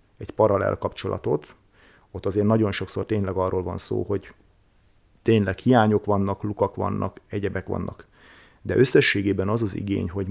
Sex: male